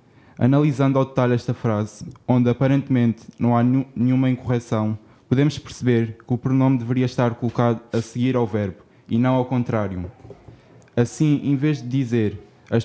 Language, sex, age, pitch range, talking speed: Portuguese, male, 20-39, 115-130 Hz, 155 wpm